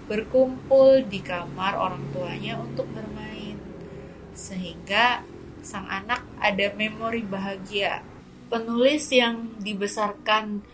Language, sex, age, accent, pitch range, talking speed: Indonesian, female, 30-49, native, 185-235 Hz, 90 wpm